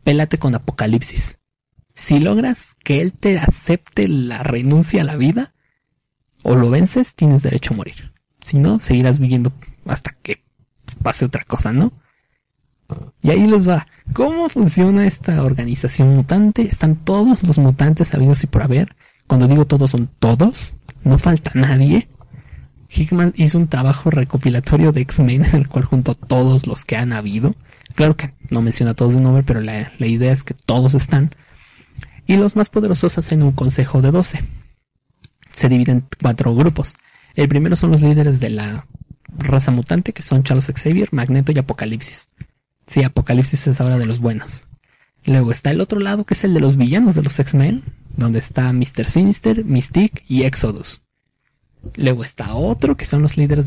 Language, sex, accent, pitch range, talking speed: Spanish, male, Mexican, 125-155 Hz, 170 wpm